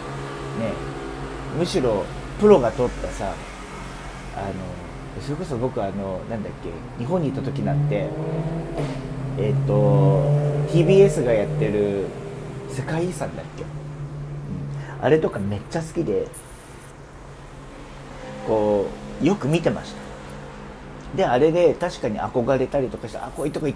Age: 40-59